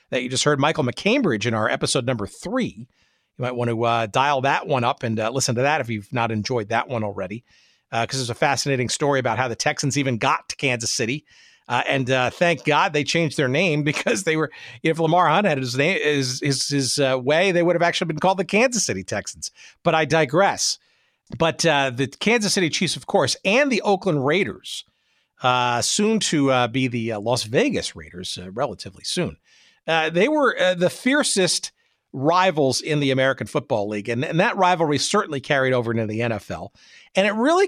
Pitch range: 120-170 Hz